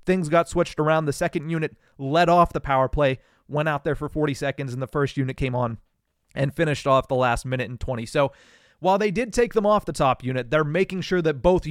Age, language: 30-49, English